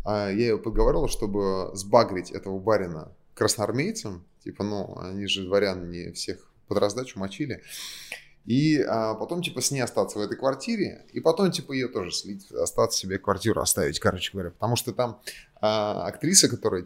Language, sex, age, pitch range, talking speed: Russian, male, 20-39, 95-120 Hz, 165 wpm